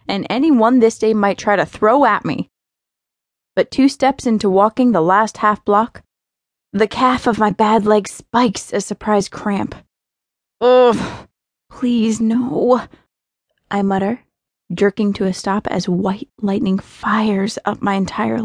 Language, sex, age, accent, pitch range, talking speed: English, female, 20-39, American, 200-235 Hz, 145 wpm